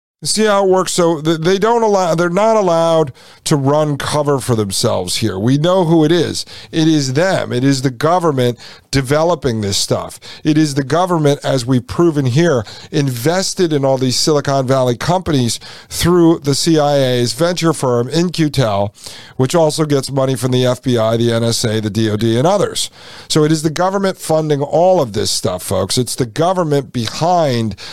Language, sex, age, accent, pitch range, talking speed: English, male, 50-69, American, 120-155 Hz, 175 wpm